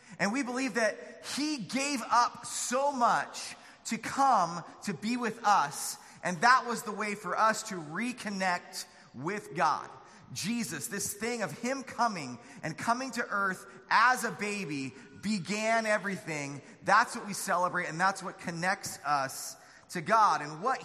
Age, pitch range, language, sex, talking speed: 30-49, 165-230 Hz, English, male, 155 wpm